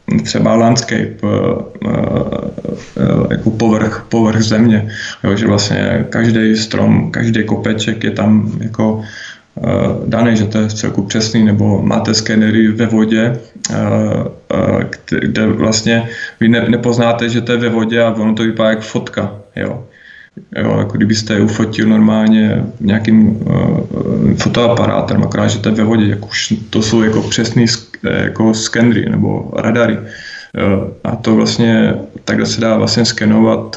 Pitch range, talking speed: 110-115 Hz, 135 wpm